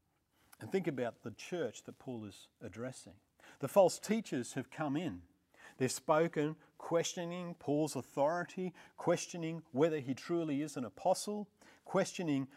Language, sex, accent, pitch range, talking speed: English, male, Australian, 115-175 Hz, 135 wpm